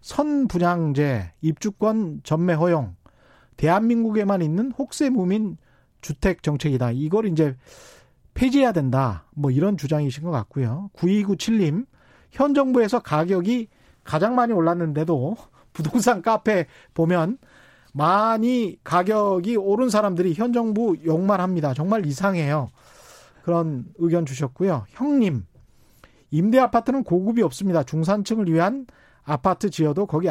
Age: 40-59